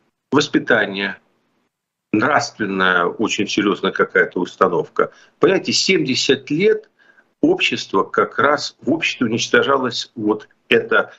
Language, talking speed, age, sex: Russian, 90 wpm, 50-69, male